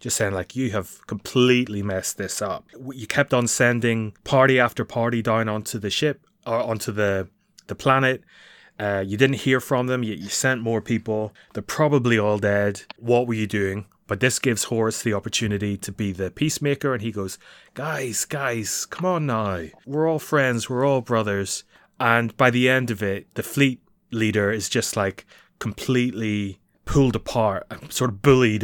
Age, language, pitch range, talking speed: 20-39, English, 105-125 Hz, 180 wpm